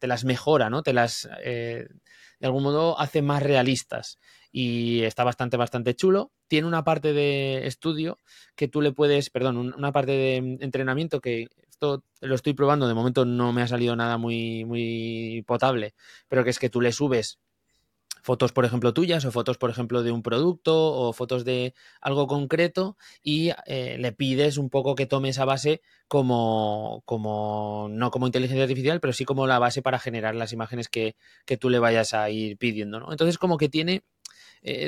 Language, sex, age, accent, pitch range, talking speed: English, male, 20-39, Spanish, 115-145 Hz, 190 wpm